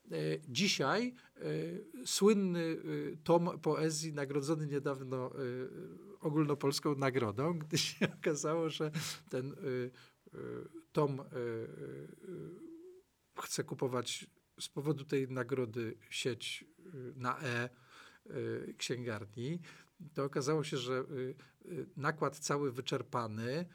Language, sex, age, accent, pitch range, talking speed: Polish, male, 40-59, native, 125-165 Hz, 80 wpm